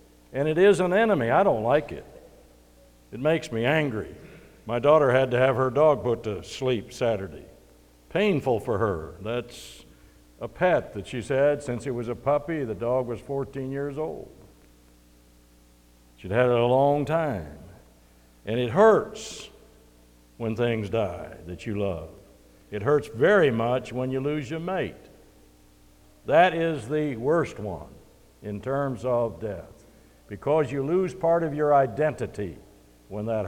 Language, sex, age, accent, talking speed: English, male, 60-79, American, 155 wpm